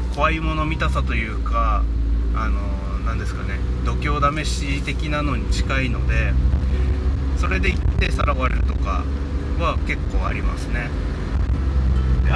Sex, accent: male, native